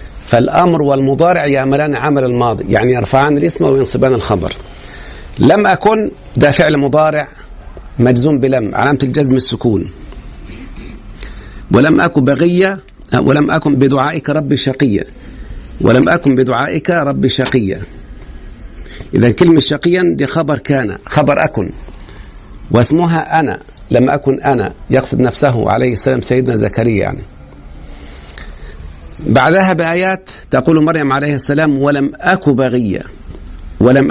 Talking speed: 110 wpm